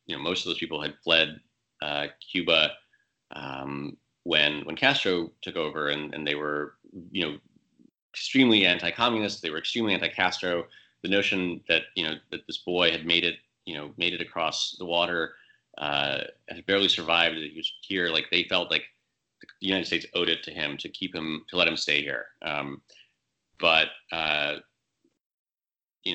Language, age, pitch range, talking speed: English, 30-49, 75-95 Hz, 175 wpm